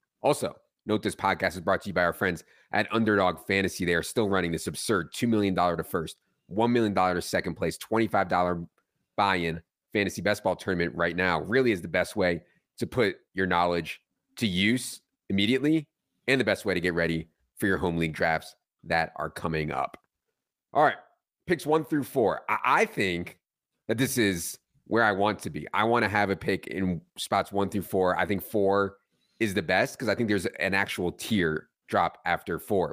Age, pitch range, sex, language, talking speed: 30-49, 90-110 Hz, male, English, 200 wpm